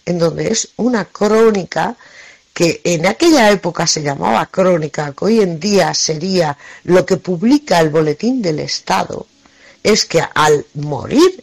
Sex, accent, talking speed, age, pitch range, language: female, Spanish, 145 wpm, 50-69, 160-240 Hz, Spanish